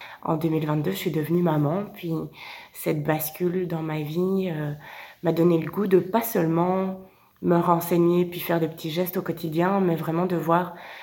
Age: 20-39